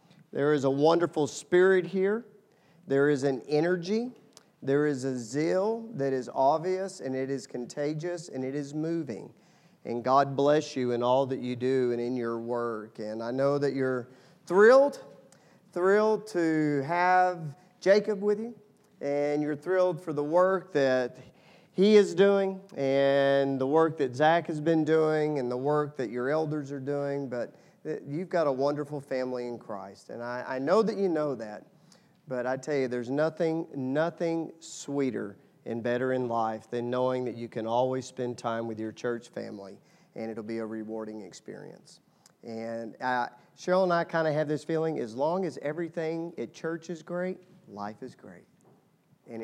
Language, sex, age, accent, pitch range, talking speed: English, male, 40-59, American, 125-175 Hz, 175 wpm